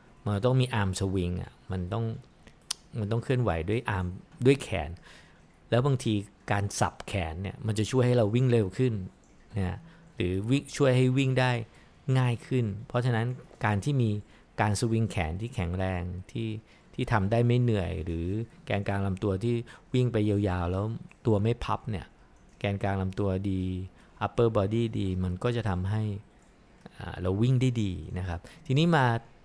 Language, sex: English, male